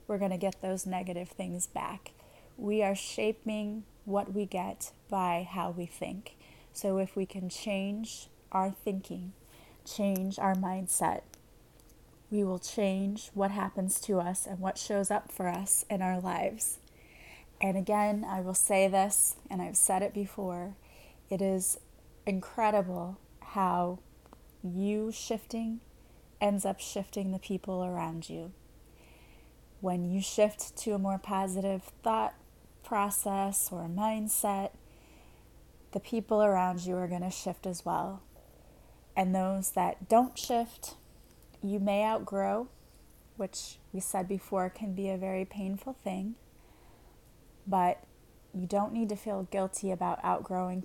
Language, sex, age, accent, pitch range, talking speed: English, female, 20-39, American, 185-205 Hz, 135 wpm